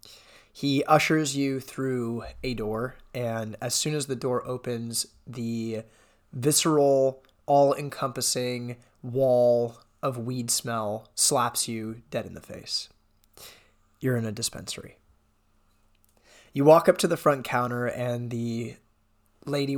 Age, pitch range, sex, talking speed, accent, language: 20-39, 115-145 Hz, male, 120 wpm, American, English